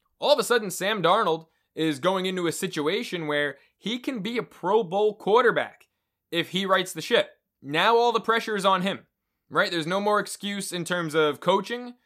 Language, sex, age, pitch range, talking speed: English, male, 20-39, 155-200 Hz, 200 wpm